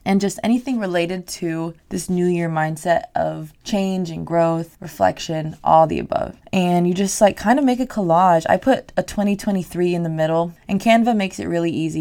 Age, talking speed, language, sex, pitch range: 20-39, 195 wpm, English, female, 165-195 Hz